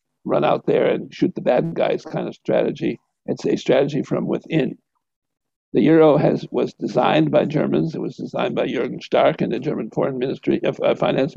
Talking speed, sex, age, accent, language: 190 wpm, male, 60-79, American, English